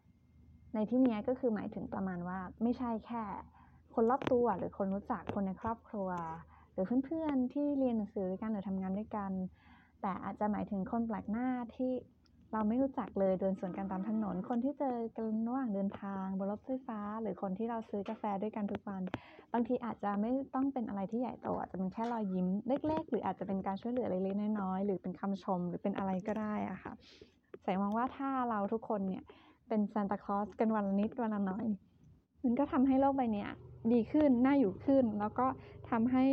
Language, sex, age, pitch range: Thai, female, 20-39, 195-245 Hz